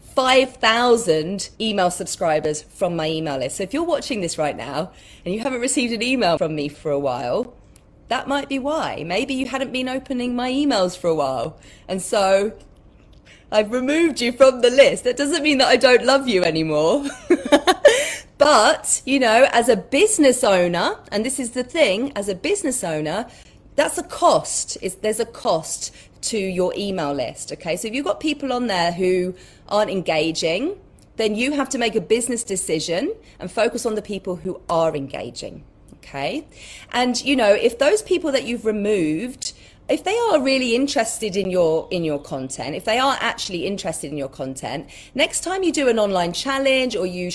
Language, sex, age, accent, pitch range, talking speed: English, female, 30-49, British, 180-265 Hz, 185 wpm